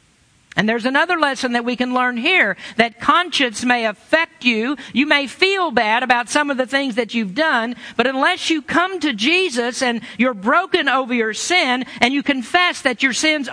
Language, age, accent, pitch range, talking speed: English, 50-69, American, 210-275 Hz, 195 wpm